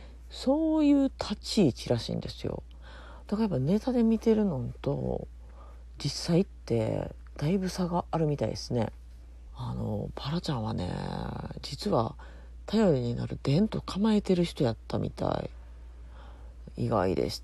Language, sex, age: Japanese, female, 40-59